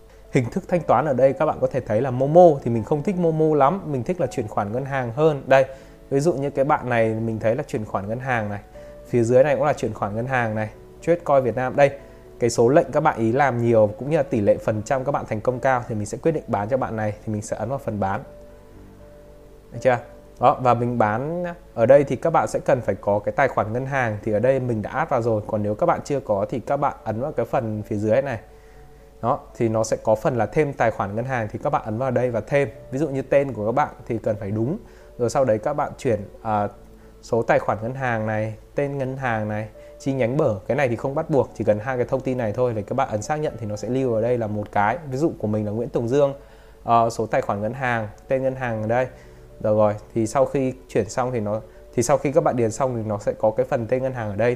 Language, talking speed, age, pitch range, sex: Vietnamese, 290 wpm, 20-39, 110-140 Hz, male